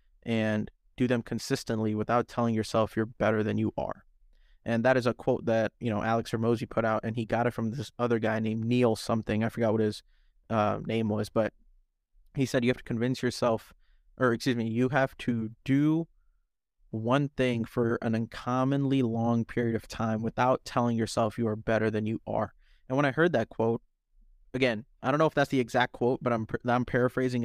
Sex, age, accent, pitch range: male, 20-39, American, 110-125 Hz